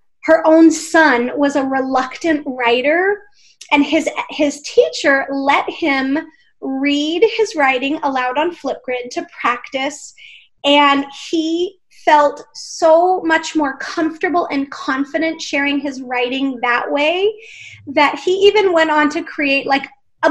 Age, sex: 30-49, female